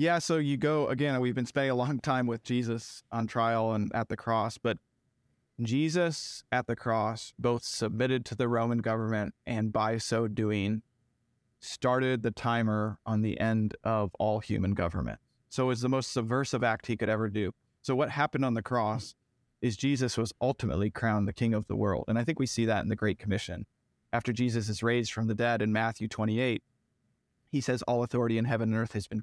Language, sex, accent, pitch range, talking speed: English, male, American, 110-125 Hz, 205 wpm